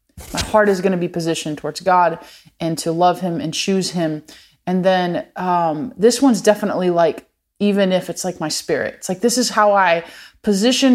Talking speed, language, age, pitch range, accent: 195 wpm, English, 20-39, 175-240 Hz, American